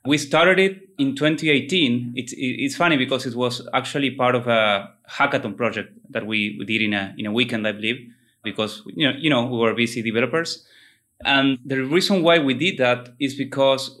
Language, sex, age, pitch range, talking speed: English, male, 20-39, 120-140 Hz, 195 wpm